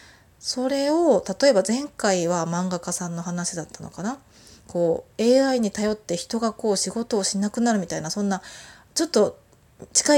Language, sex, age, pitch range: Japanese, female, 20-39, 190-255 Hz